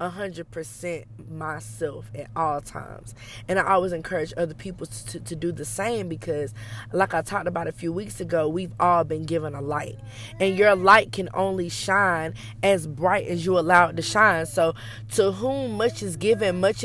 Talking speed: 185 wpm